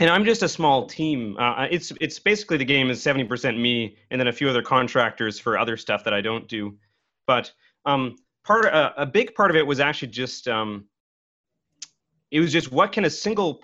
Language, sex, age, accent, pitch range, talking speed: English, male, 30-49, American, 125-160 Hz, 210 wpm